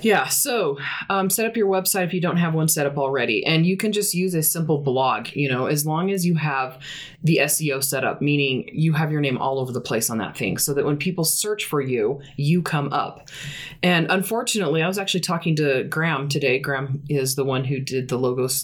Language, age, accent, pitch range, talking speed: English, 20-39, American, 135-170 Hz, 235 wpm